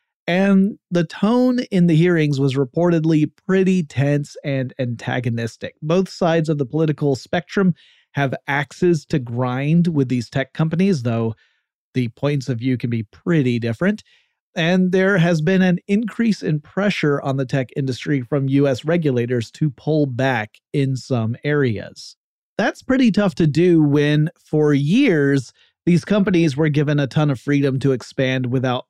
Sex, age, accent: male, 30-49, American